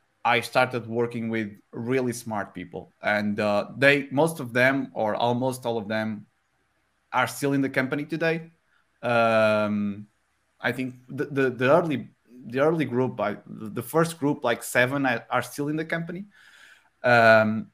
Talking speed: 160 wpm